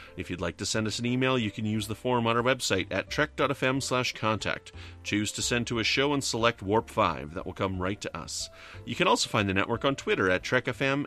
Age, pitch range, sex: 30-49, 90-115 Hz, male